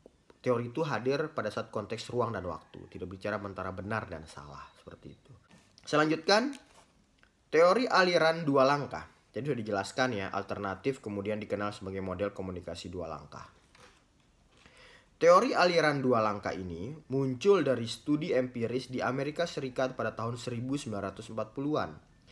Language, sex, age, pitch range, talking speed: Indonesian, male, 20-39, 105-145 Hz, 130 wpm